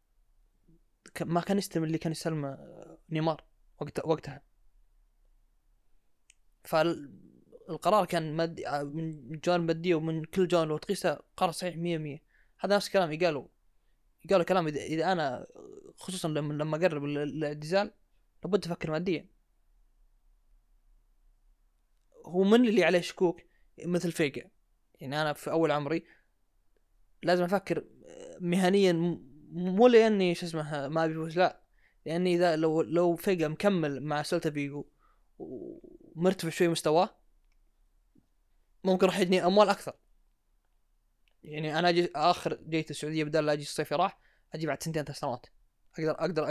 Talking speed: 125 wpm